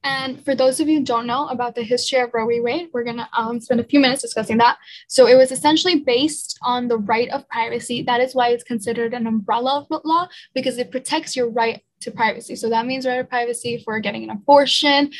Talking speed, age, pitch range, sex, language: 235 wpm, 10-29, 235-275 Hz, female, English